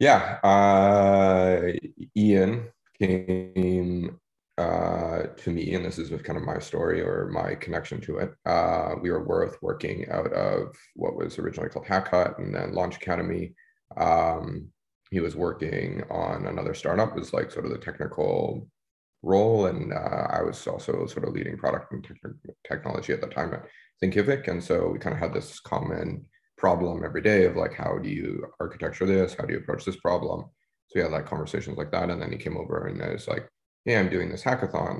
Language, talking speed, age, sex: English, 190 wpm, 30-49, male